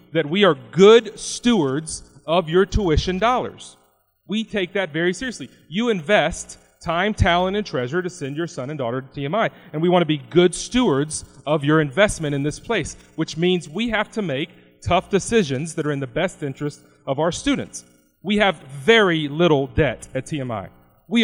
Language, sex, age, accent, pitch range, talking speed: English, male, 40-59, American, 140-200 Hz, 185 wpm